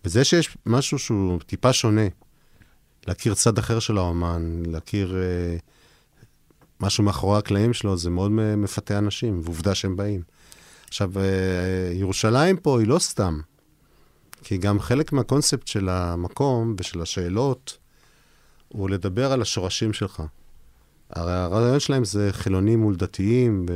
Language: Hebrew